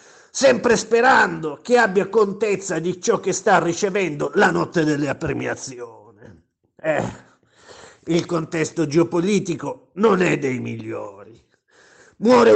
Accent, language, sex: native, Italian, male